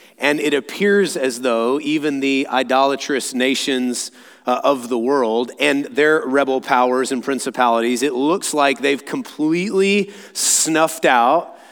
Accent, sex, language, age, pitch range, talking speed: American, male, English, 30-49, 135-175 Hz, 135 wpm